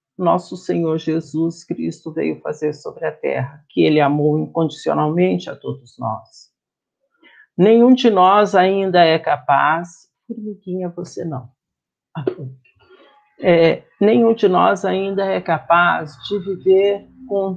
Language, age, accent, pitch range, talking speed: Portuguese, 50-69, Brazilian, 155-225 Hz, 120 wpm